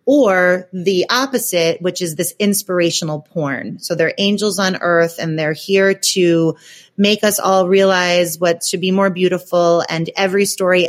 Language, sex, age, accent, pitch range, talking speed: English, female, 30-49, American, 170-210 Hz, 160 wpm